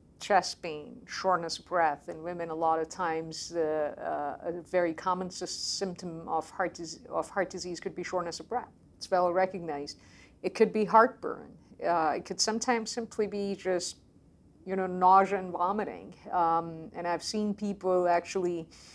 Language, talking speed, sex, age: English, 160 wpm, female, 50-69